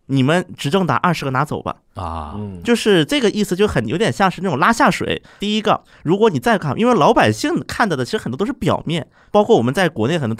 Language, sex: Chinese, male